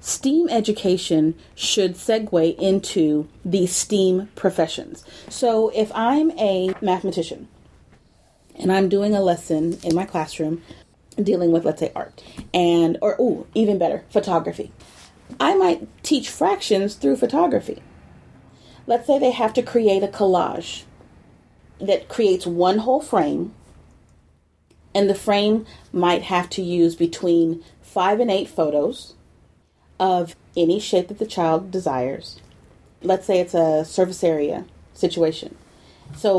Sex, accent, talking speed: female, American, 125 wpm